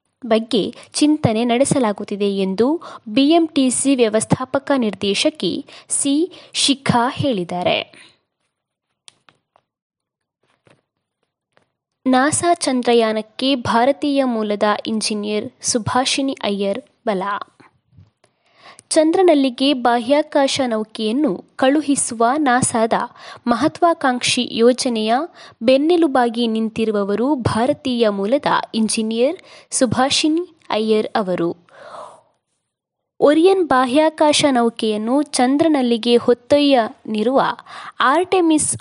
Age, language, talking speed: 20-39, Kannada, 60 wpm